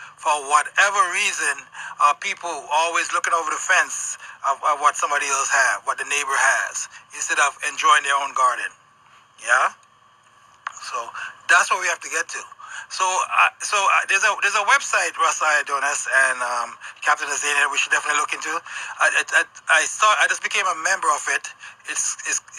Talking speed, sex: 180 wpm, male